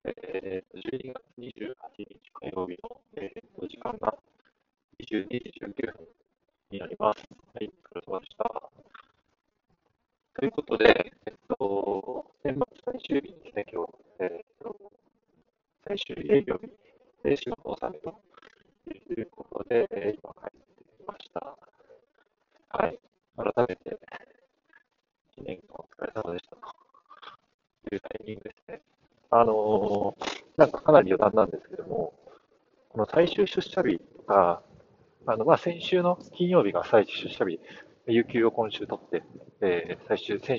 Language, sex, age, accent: Japanese, female, 40-59, American